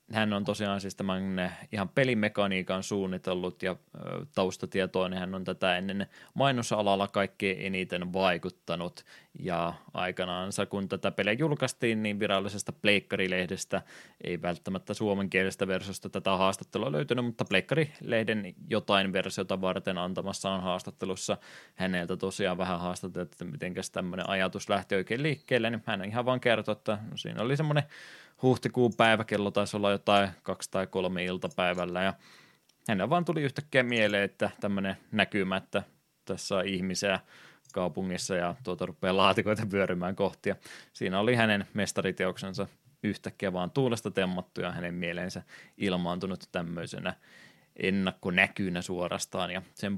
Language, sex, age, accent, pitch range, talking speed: Finnish, male, 20-39, native, 95-110 Hz, 130 wpm